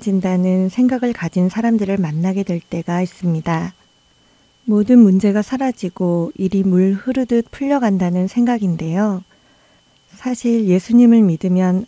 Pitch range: 180-225 Hz